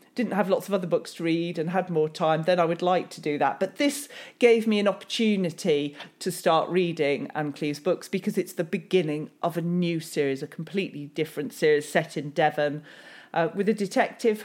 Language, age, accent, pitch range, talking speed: English, 40-59, British, 155-215 Hz, 210 wpm